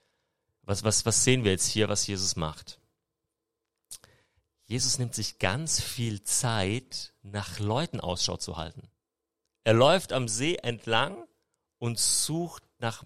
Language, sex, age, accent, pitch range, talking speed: German, male, 40-59, German, 100-120 Hz, 135 wpm